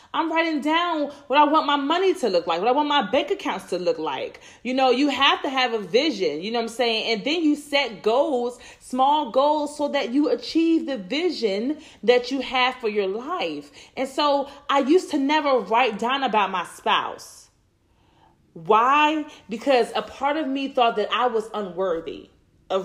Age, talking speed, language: 30-49, 195 wpm, English